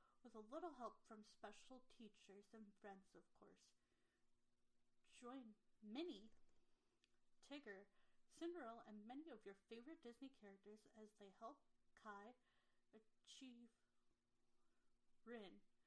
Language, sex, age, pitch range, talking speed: English, female, 30-49, 210-250 Hz, 105 wpm